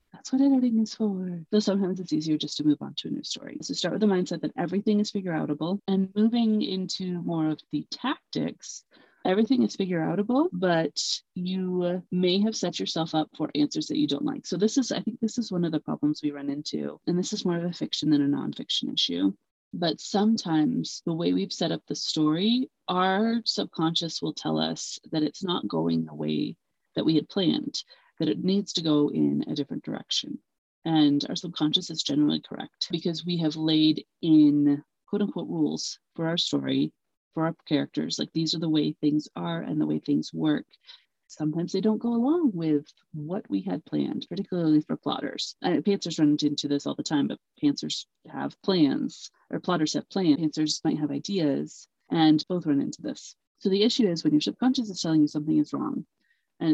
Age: 30-49